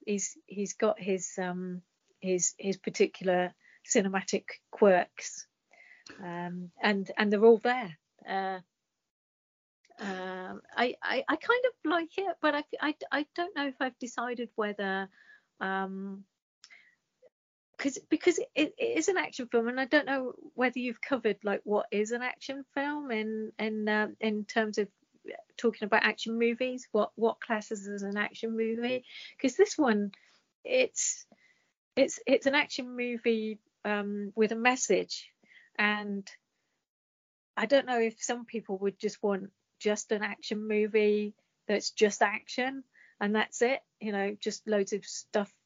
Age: 40-59